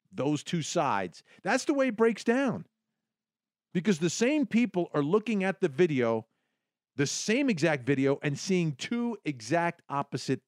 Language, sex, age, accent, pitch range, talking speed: English, male, 50-69, American, 140-210 Hz, 155 wpm